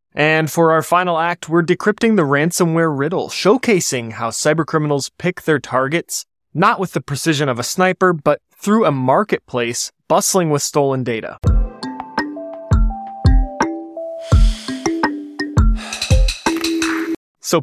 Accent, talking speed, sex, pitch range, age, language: American, 110 wpm, male, 130-185 Hz, 20-39, English